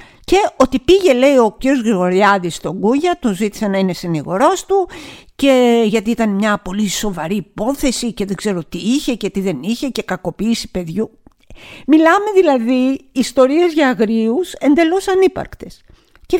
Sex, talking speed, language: female, 155 wpm, Greek